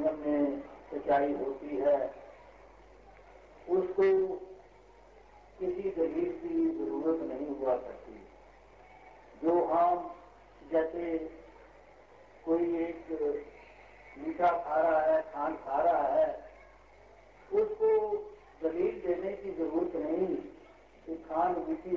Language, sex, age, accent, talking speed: Hindi, male, 60-79, native, 95 wpm